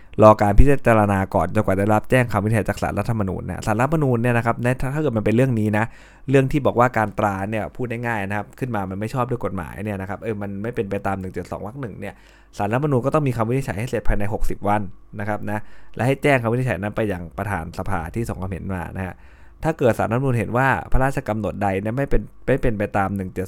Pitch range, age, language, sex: 95-115 Hz, 20-39, Thai, male